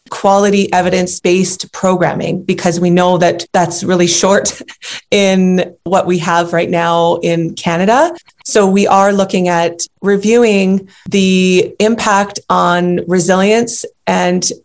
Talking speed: 120 wpm